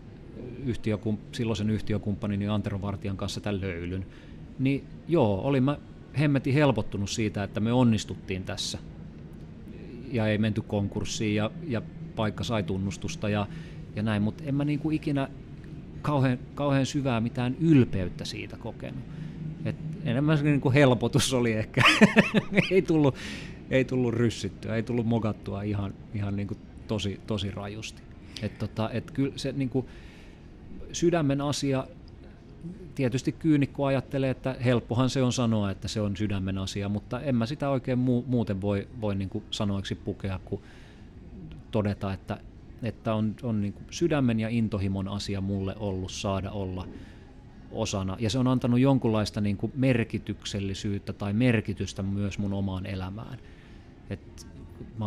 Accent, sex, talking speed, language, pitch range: native, male, 135 wpm, Finnish, 100-130 Hz